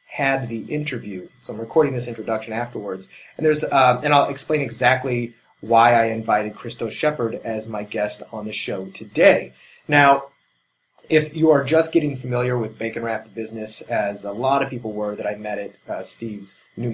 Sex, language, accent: male, English, American